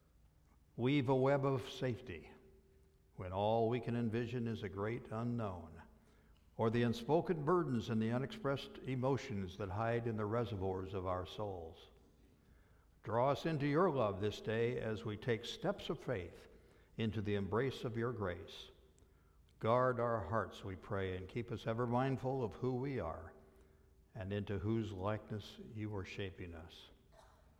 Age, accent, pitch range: 60-79, American, 95-125 Hz